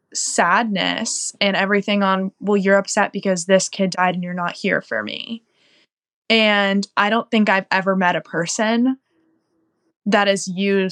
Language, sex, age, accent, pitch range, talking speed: English, female, 10-29, American, 180-230 Hz, 160 wpm